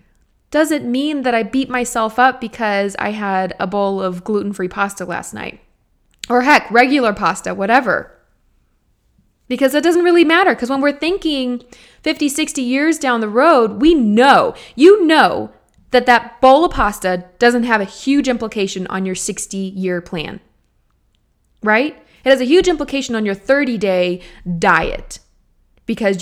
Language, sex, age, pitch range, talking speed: English, female, 20-39, 200-260 Hz, 150 wpm